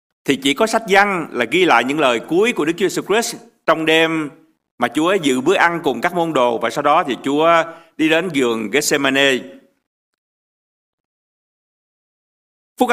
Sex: male